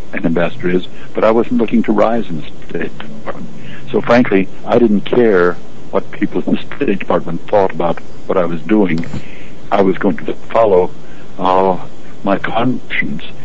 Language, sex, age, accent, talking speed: English, male, 60-79, American, 170 wpm